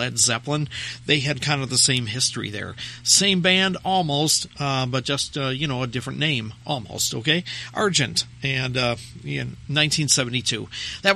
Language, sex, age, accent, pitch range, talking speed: English, male, 50-69, American, 125-165 Hz, 160 wpm